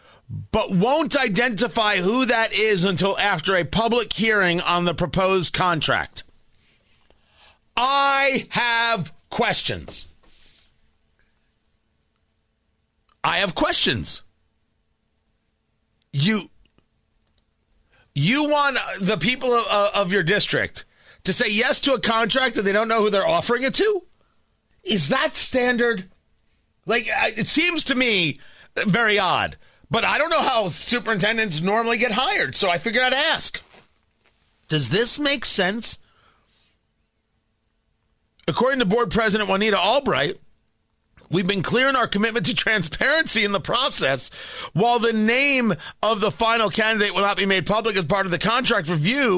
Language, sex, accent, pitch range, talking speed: English, male, American, 190-240 Hz, 130 wpm